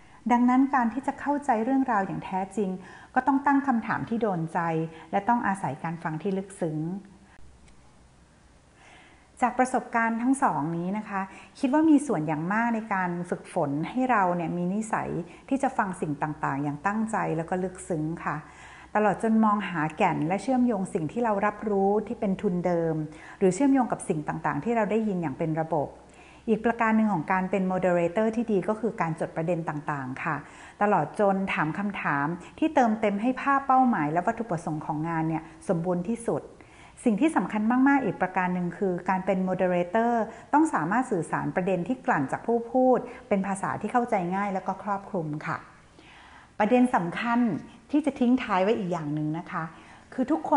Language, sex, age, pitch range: Thai, female, 60-79, 170-235 Hz